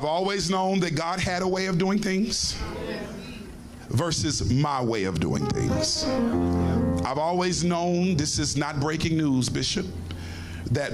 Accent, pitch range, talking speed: American, 115-180 Hz, 150 wpm